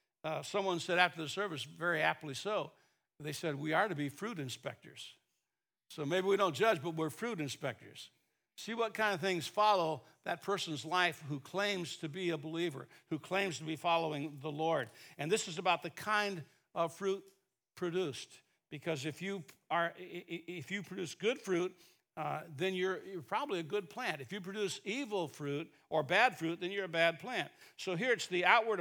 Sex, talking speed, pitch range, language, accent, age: male, 190 wpm, 155-205 Hz, English, American, 60-79